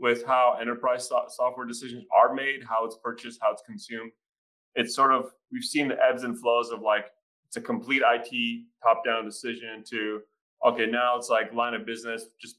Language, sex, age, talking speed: English, male, 20-39, 185 wpm